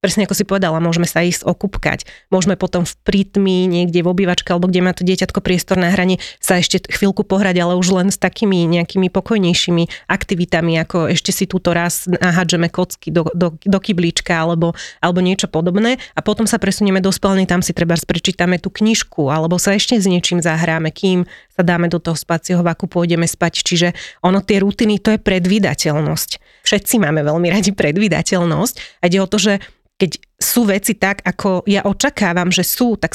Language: Slovak